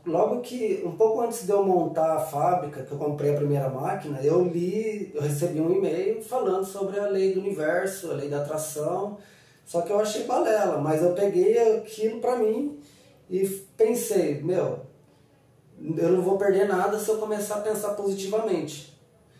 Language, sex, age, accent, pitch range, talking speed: Portuguese, male, 20-39, Brazilian, 155-215 Hz, 175 wpm